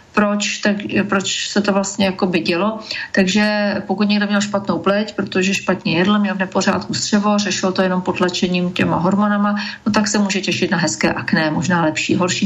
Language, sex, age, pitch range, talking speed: Slovak, female, 40-59, 180-205 Hz, 190 wpm